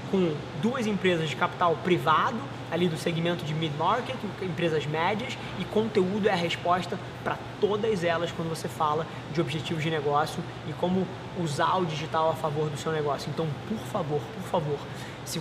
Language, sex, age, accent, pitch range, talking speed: Portuguese, male, 20-39, Brazilian, 150-170 Hz, 175 wpm